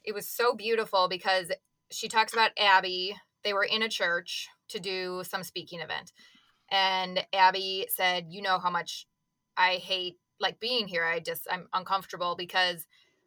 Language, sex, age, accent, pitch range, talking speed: English, female, 20-39, American, 185-220 Hz, 165 wpm